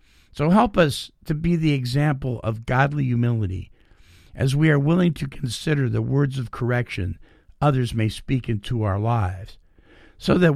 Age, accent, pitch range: 50-69, American, 95-150 Hz